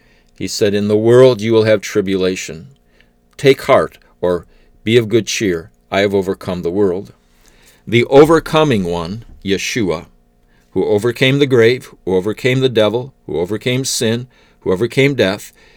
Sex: male